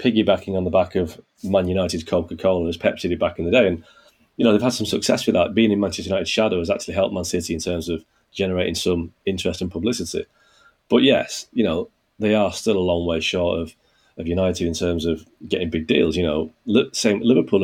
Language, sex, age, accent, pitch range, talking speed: English, male, 30-49, British, 90-105 Hz, 220 wpm